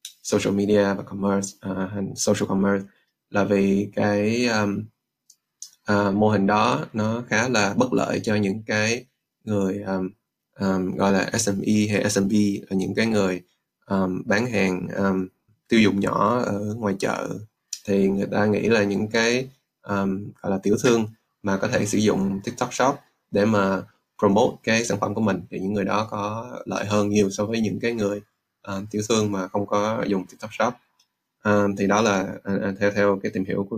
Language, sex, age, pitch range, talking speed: Vietnamese, male, 20-39, 100-110 Hz, 190 wpm